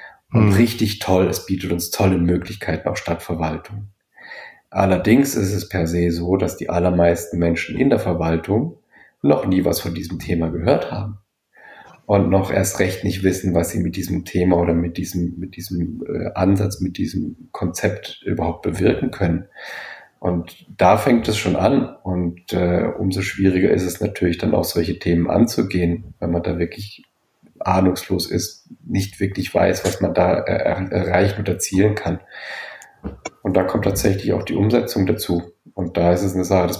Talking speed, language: 170 wpm, German